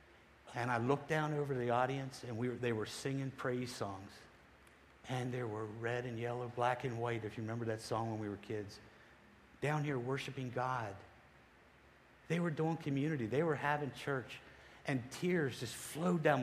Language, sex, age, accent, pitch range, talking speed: English, male, 50-69, American, 105-135 Hz, 185 wpm